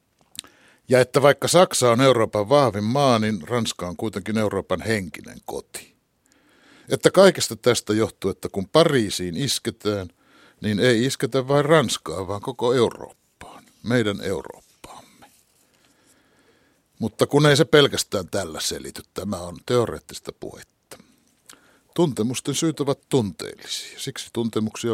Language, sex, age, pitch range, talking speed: Finnish, male, 60-79, 95-135 Hz, 120 wpm